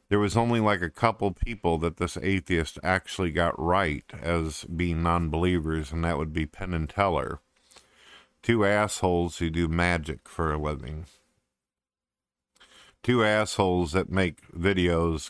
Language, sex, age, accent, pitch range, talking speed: English, male, 50-69, American, 80-100 Hz, 140 wpm